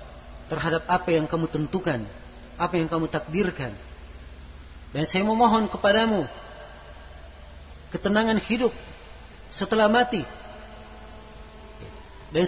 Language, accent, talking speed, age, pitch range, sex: Indonesian, native, 85 wpm, 40-59, 145-210 Hz, male